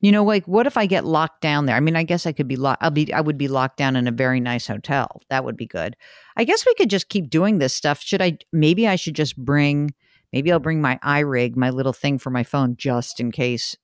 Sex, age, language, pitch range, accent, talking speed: female, 50-69, English, 135-195 Hz, American, 275 wpm